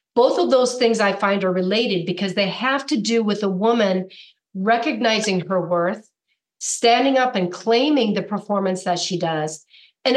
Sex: female